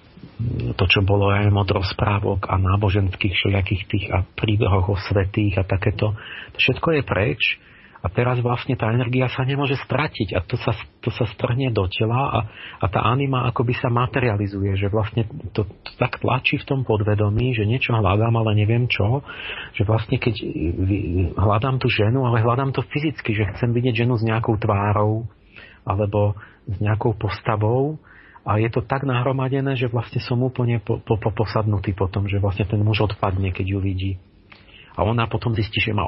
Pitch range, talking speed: 100-120 Hz, 165 wpm